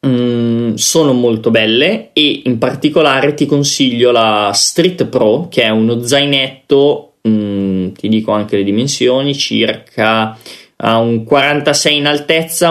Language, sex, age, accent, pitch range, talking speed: Italian, male, 20-39, native, 115-145 Hz, 130 wpm